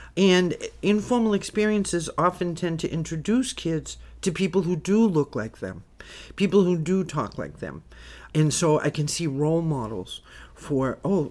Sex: male